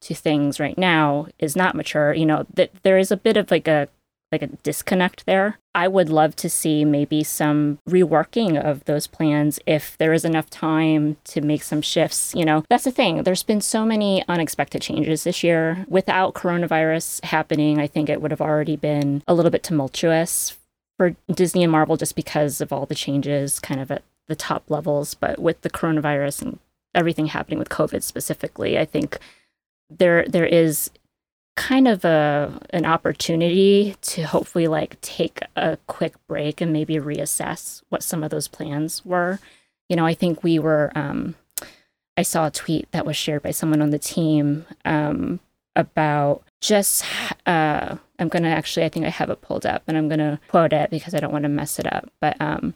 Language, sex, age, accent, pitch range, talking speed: English, female, 20-39, American, 150-175 Hz, 190 wpm